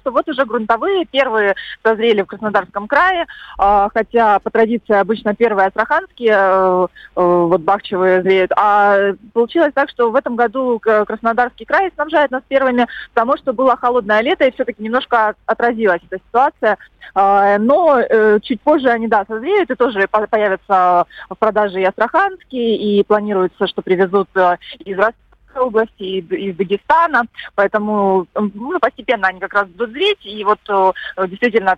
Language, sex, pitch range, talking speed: Russian, female, 200-245 Hz, 140 wpm